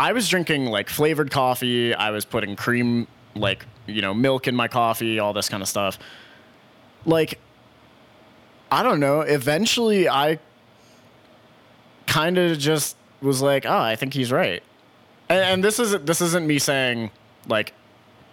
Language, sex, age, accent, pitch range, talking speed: English, male, 20-39, American, 110-140 Hz, 150 wpm